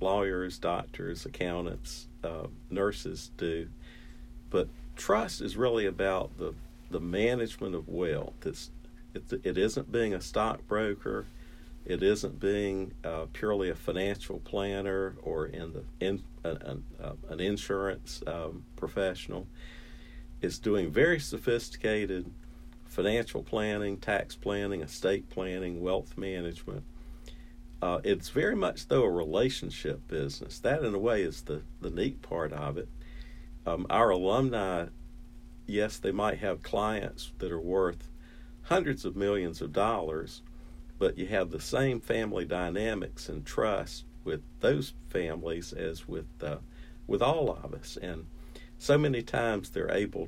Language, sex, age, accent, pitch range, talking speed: English, male, 50-69, American, 75-100 Hz, 130 wpm